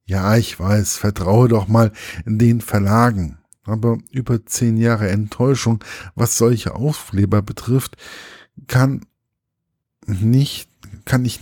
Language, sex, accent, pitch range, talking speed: German, male, German, 100-125 Hz, 115 wpm